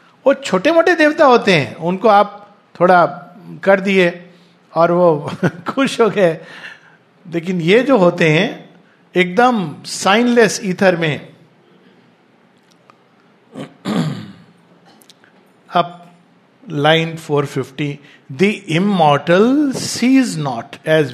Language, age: Hindi, 50-69